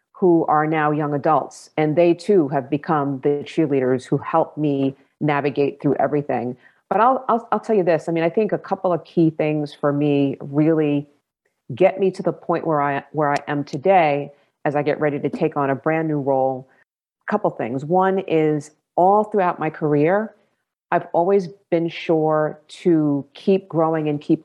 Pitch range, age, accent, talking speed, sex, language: 145-165 Hz, 40-59, American, 190 wpm, female, English